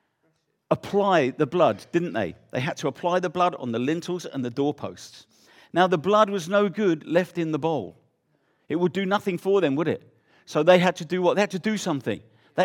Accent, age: British, 50-69